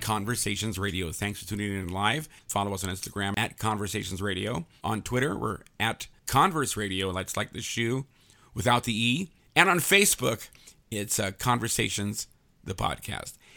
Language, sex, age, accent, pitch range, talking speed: English, male, 50-69, American, 105-135 Hz, 155 wpm